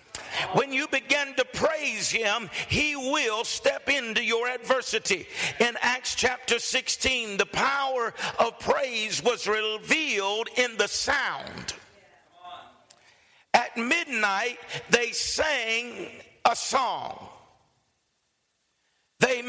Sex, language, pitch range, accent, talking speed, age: male, English, 230-280 Hz, American, 100 wpm, 50-69